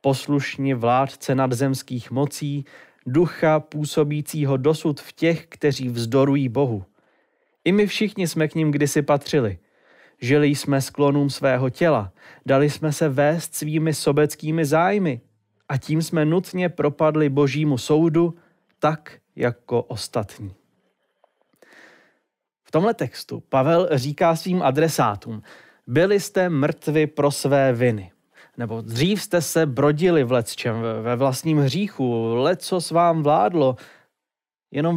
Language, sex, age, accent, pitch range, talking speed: Czech, male, 20-39, native, 125-160 Hz, 120 wpm